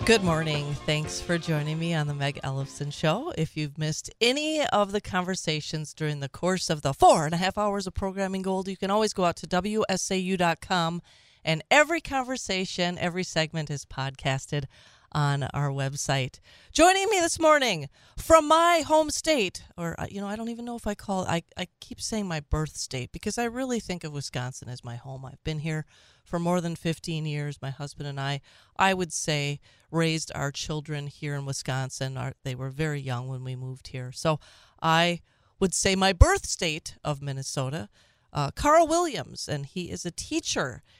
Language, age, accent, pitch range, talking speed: English, 40-59, American, 145-190 Hz, 185 wpm